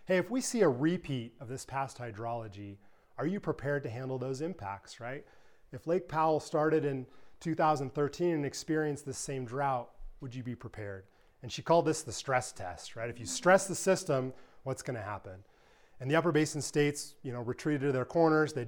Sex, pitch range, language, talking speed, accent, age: male, 120-155 Hz, English, 195 wpm, American, 30-49